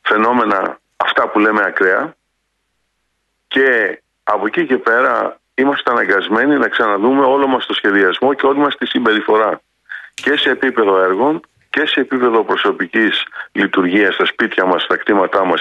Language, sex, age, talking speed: Greek, male, 50-69, 145 wpm